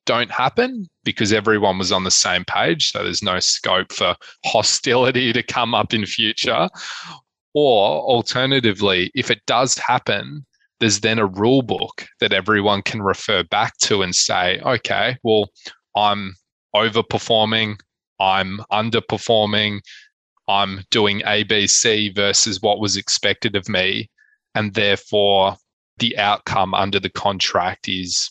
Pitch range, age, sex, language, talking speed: 100-120 Hz, 20-39, male, English, 130 wpm